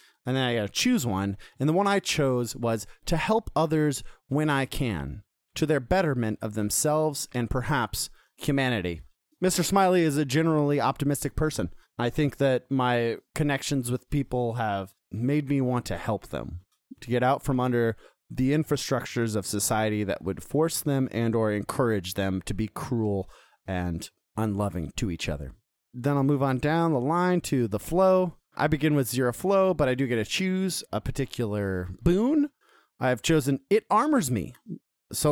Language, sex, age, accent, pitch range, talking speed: English, male, 30-49, American, 105-145 Hz, 175 wpm